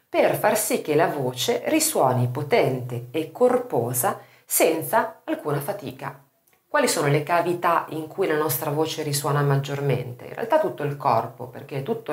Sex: female